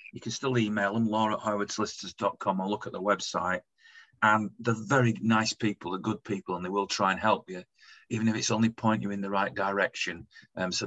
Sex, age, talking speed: male, 40-59, 210 wpm